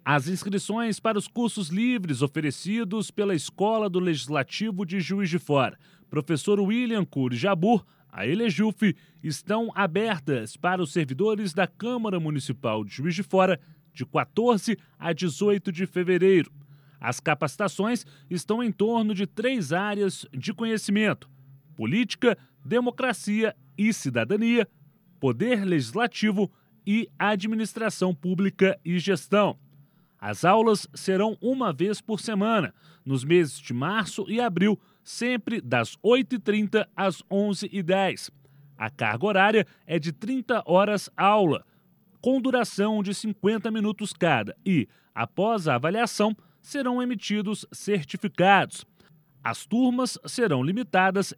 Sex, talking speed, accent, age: male, 120 wpm, Brazilian, 30-49